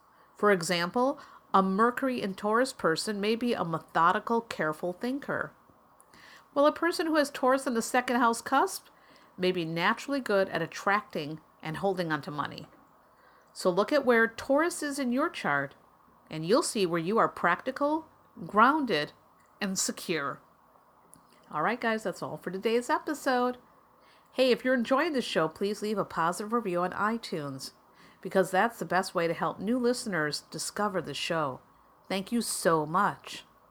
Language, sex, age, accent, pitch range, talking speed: English, female, 50-69, American, 170-250 Hz, 160 wpm